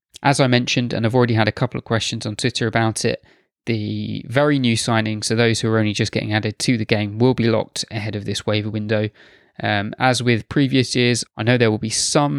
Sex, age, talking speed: male, 20-39, 235 wpm